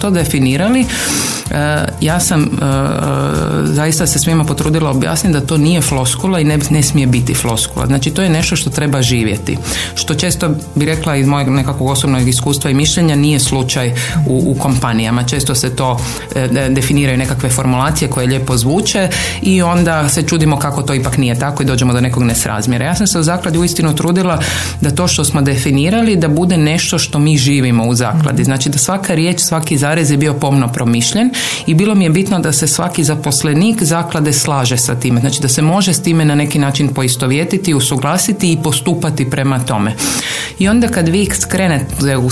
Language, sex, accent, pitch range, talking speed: Croatian, female, native, 135-170 Hz, 185 wpm